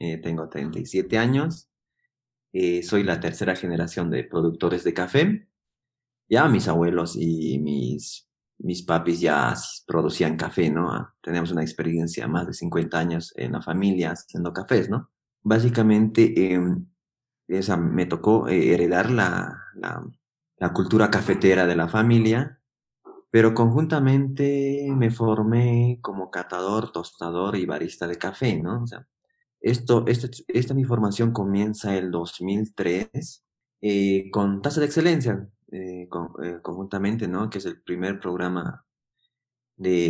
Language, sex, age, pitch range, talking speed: Spanish, male, 30-49, 90-120 Hz, 140 wpm